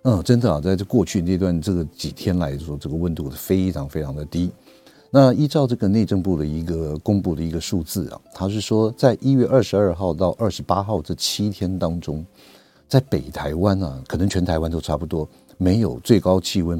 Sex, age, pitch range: male, 50-69, 80-100 Hz